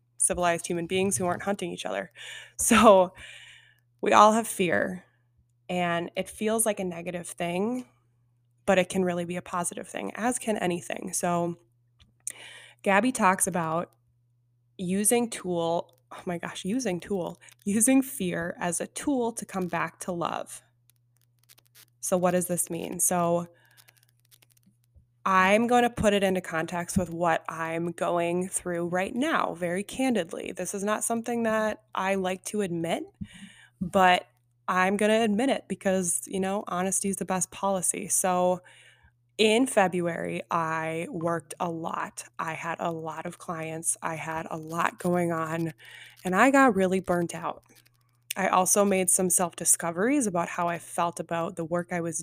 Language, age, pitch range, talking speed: English, 20-39, 165-195 Hz, 155 wpm